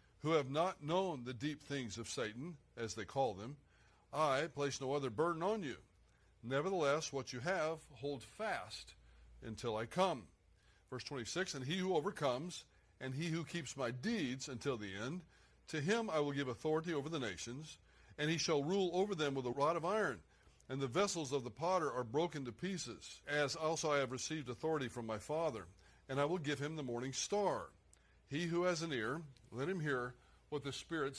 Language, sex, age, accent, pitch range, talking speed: English, male, 60-79, American, 125-160 Hz, 195 wpm